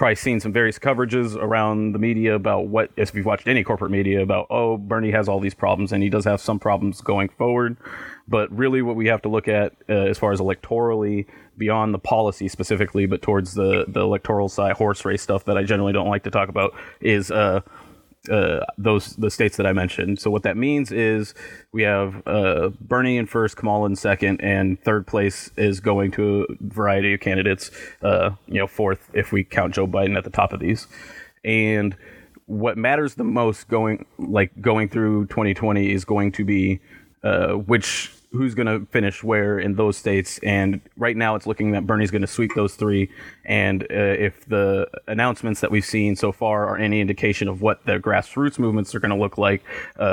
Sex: male